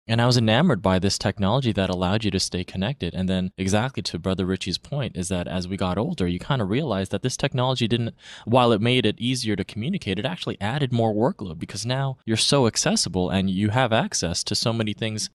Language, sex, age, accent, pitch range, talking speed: English, male, 20-39, American, 95-115 Hz, 230 wpm